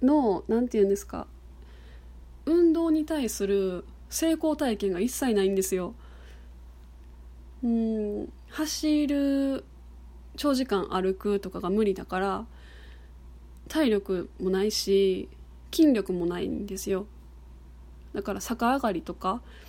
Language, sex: Japanese, female